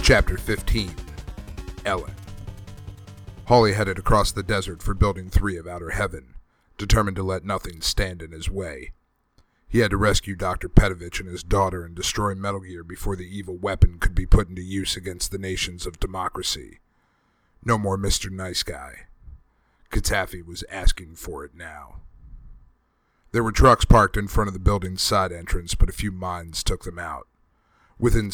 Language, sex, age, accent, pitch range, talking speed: English, male, 40-59, American, 90-100 Hz, 165 wpm